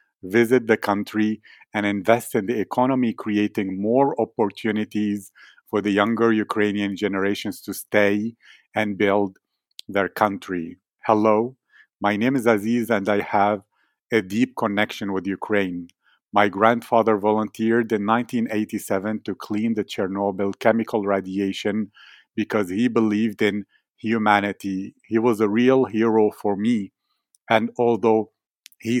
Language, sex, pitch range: English, male, 100-115 Hz